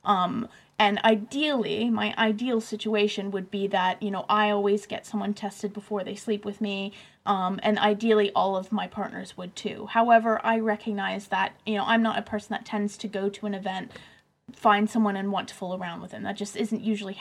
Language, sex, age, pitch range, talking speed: English, female, 20-39, 200-220 Hz, 210 wpm